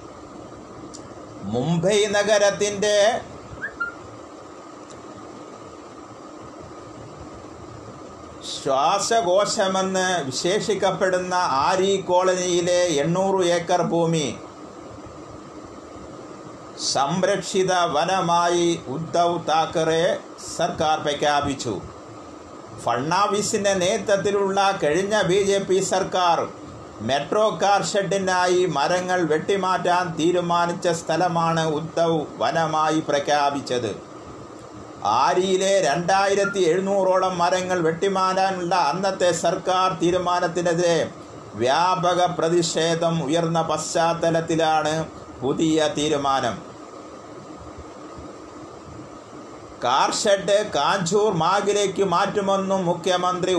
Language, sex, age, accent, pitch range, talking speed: Malayalam, male, 50-69, native, 165-195 Hz, 55 wpm